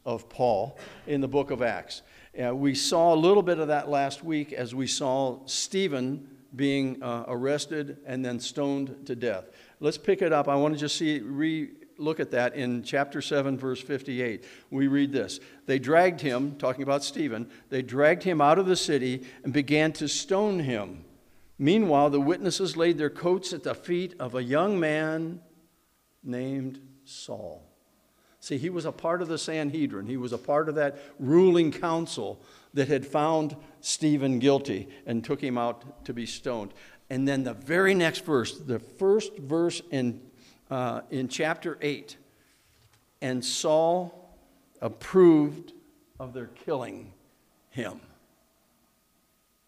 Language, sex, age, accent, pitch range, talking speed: English, male, 60-79, American, 135-165 Hz, 160 wpm